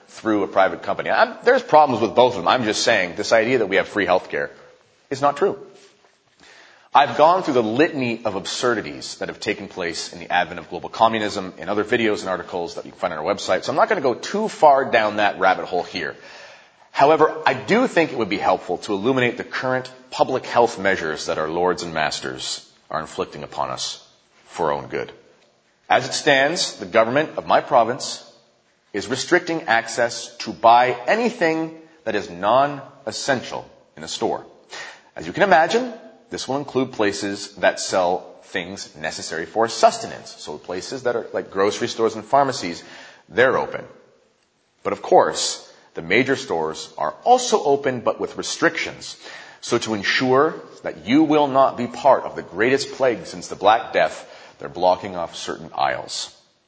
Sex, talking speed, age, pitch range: male, 185 wpm, 30-49, 110-175 Hz